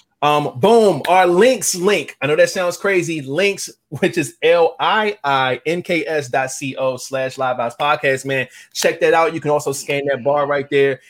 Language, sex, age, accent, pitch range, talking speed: English, male, 20-39, American, 140-175 Hz, 175 wpm